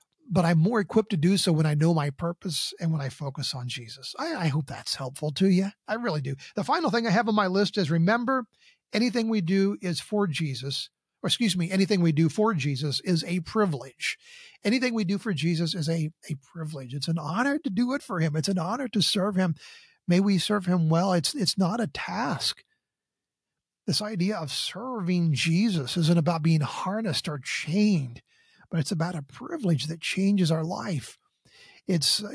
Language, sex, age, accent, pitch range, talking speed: English, male, 50-69, American, 155-195 Hz, 200 wpm